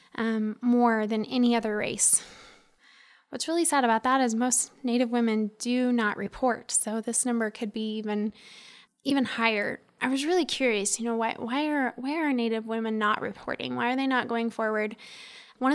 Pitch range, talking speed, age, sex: 225-265 Hz, 185 wpm, 10-29, female